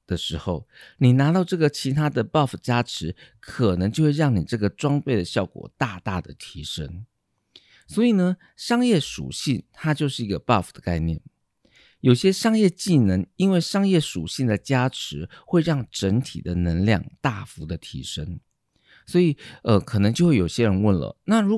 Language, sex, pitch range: Chinese, male, 100-150 Hz